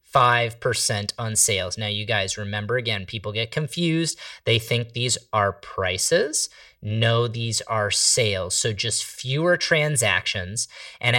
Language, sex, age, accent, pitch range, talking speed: English, male, 30-49, American, 105-140 Hz, 135 wpm